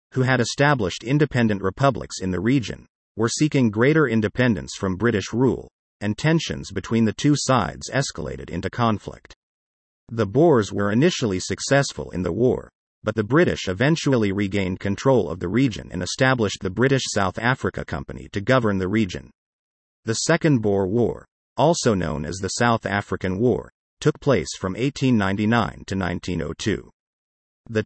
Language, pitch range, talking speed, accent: English, 95-130 Hz, 150 wpm, American